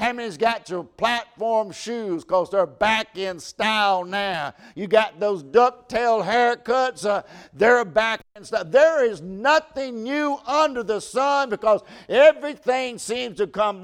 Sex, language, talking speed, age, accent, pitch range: male, English, 150 wpm, 60-79, American, 205-255 Hz